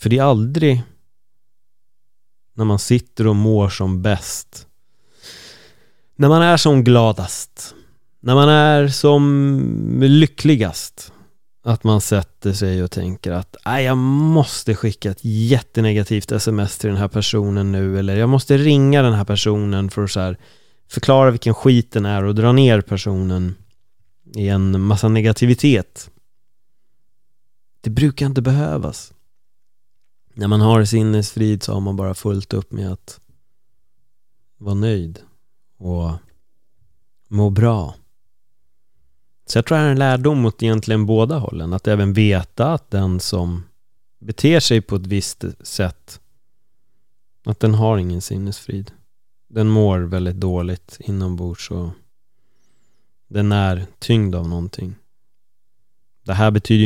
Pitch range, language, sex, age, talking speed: 95-120 Hz, Swedish, male, 30-49, 130 wpm